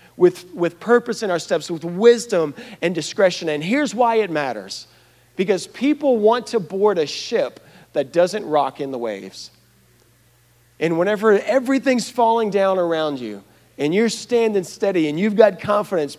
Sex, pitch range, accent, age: male, 130-185 Hz, American, 40-59